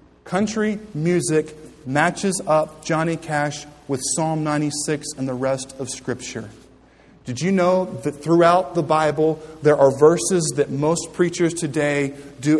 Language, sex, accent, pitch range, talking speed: English, male, American, 145-175 Hz, 140 wpm